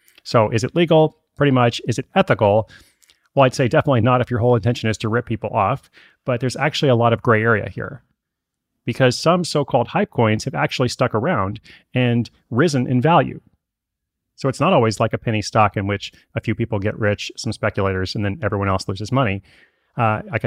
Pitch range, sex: 105-130 Hz, male